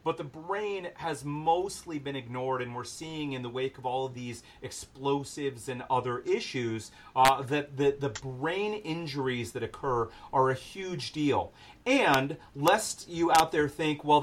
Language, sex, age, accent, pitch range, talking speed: English, male, 40-59, American, 130-160 Hz, 170 wpm